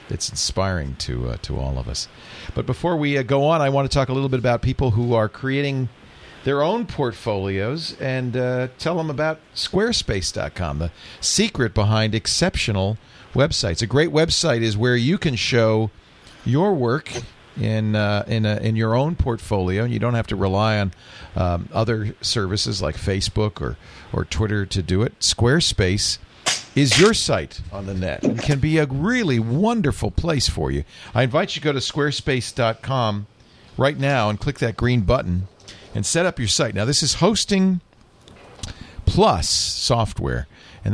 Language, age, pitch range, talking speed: English, 50-69, 100-135 Hz, 170 wpm